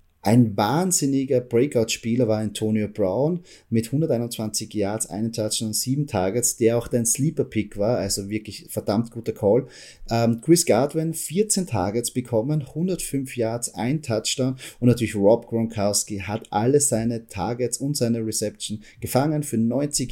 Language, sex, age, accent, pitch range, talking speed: German, male, 30-49, German, 110-135 Hz, 140 wpm